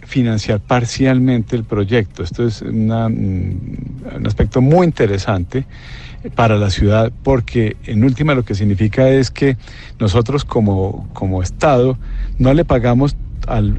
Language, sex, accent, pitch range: Spanish, male, Colombian, 100-125 Hz